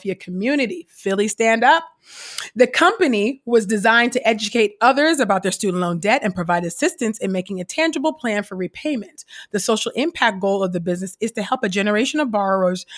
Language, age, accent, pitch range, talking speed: English, 30-49, American, 190-245 Hz, 185 wpm